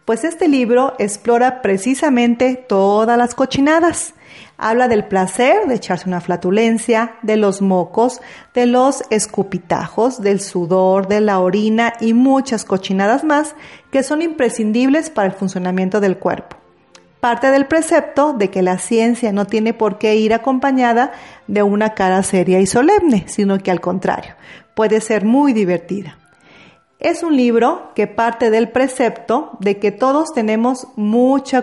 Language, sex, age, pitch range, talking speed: Spanish, female, 40-59, 200-255 Hz, 145 wpm